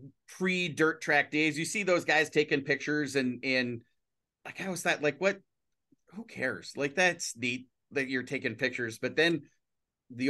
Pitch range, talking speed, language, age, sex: 130-155 Hz, 165 wpm, English, 30-49, male